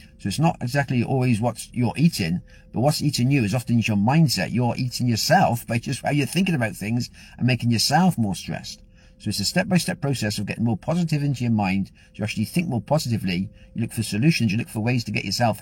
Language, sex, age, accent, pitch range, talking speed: English, male, 50-69, British, 105-145 Hz, 225 wpm